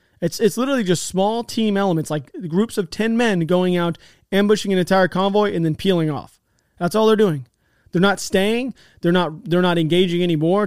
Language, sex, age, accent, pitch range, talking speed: English, male, 30-49, American, 160-190 Hz, 195 wpm